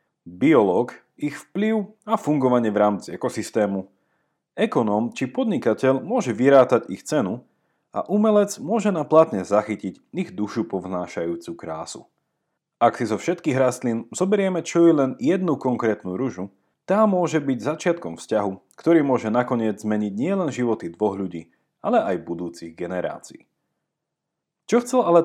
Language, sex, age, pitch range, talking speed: Slovak, male, 30-49, 105-170 Hz, 135 wpm